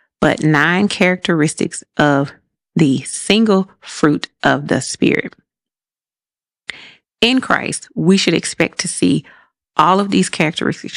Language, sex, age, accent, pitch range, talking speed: English, female, 30-49, American, 155-195 Hz, 115 wpm